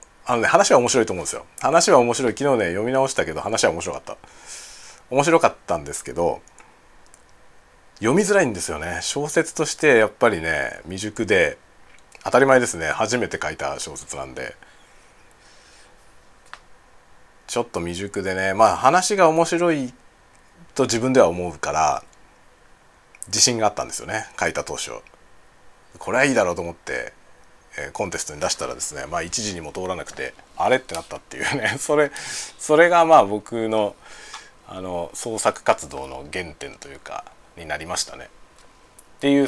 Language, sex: Japanese, male